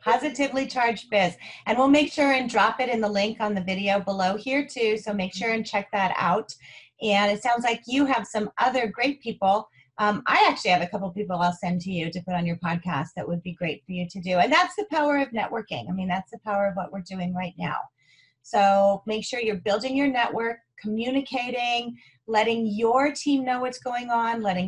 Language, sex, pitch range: English, female, 200-250 Hz